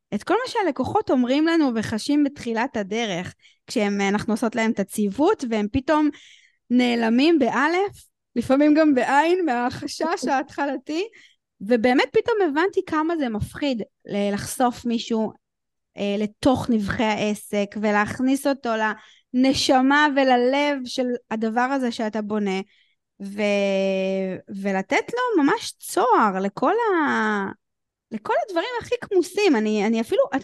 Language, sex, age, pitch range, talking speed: Hebrew, female, 20-39, 215-285 Hz, 115 wpm